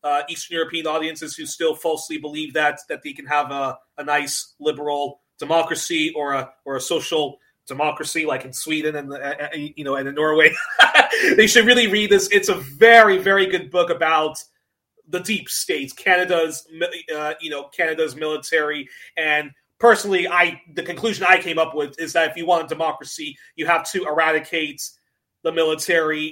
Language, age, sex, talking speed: English, 30-49, male, 180 wpm